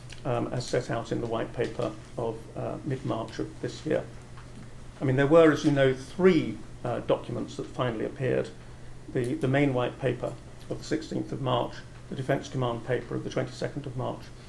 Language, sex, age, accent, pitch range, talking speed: English, male, 50-69, British, 125-155 Hz, 190 wpm